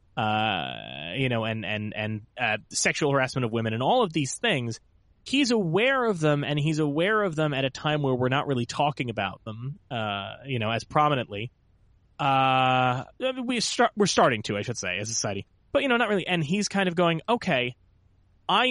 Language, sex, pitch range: English, male, 110-160 Hz